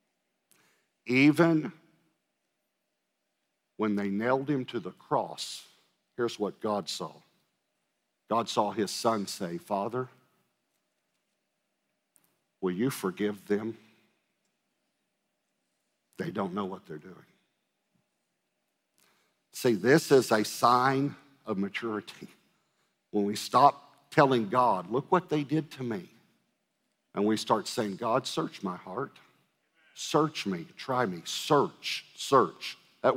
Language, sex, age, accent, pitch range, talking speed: English, male, 50-69, American, 110-145 Hz, 110 wpm